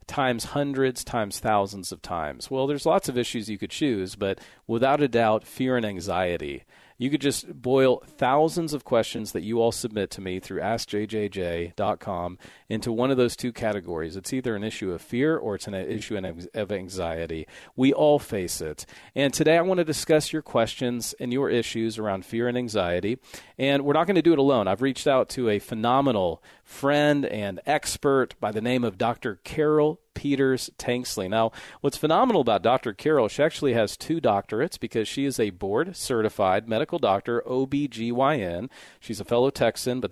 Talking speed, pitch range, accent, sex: 180 wpm, 105-140 Hz, American, male